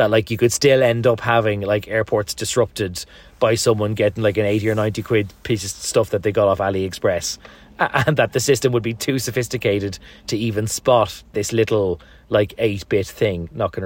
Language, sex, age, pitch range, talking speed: English, male, 30-49, 100-125 Hz, 205 wpm